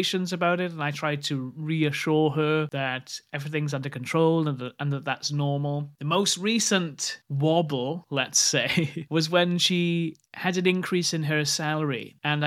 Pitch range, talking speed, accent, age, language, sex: 140-160 Hz, 155 wpm, British, 30-49, English, male